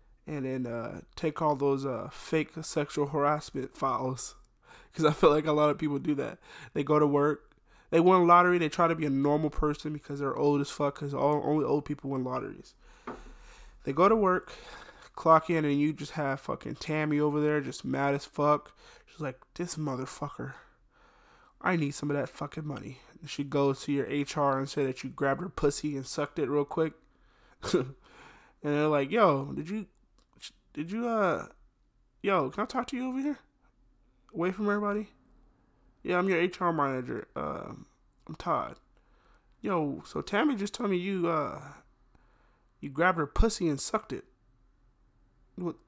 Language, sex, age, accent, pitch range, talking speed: English, male, 20-39, American, 140-170 Hz, 180 wpm